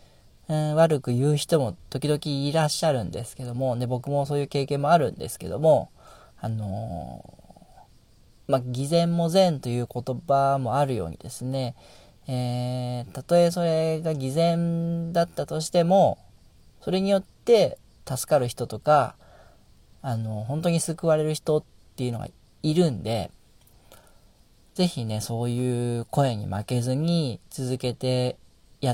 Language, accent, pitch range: Japanese, native, 115-155 Hz